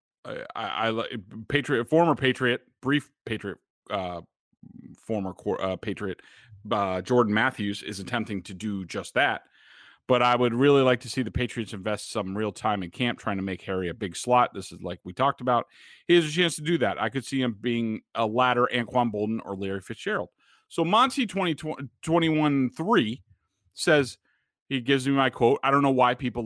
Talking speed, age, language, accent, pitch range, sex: 190 wpm, 30-49, English, American, 105-135 Hz, male